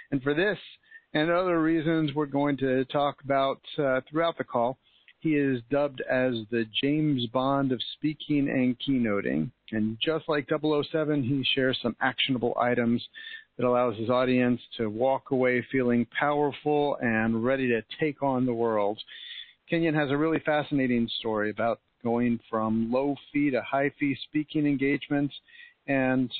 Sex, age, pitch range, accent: male, 50-69, 125-155 Hz, American